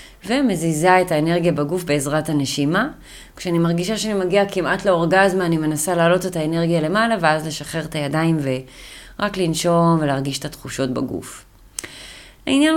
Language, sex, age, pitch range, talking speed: Hebrew, female, 30-49, 145-190 Hz, 135 wpm